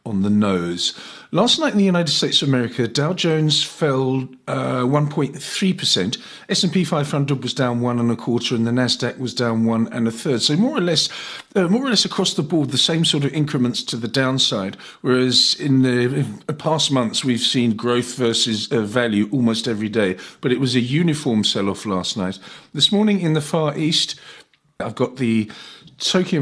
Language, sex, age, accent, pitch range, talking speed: English, male, 50-69, British, 110-145 Hz, 195 wpm